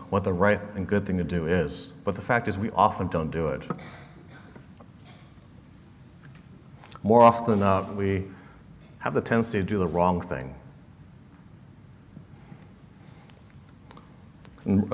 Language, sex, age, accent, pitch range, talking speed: English, male, 40-59, American, 90-115 Hz, 130 wpm